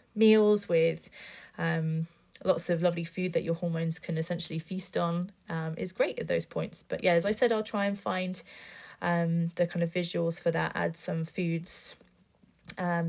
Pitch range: 165-195 Hz